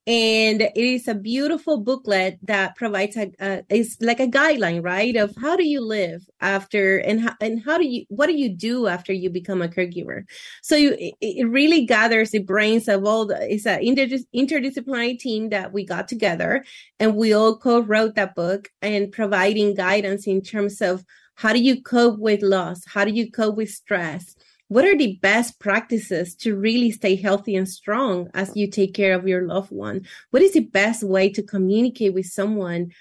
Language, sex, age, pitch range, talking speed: English, female, 30-49, 195-235 Hz, 195 wpm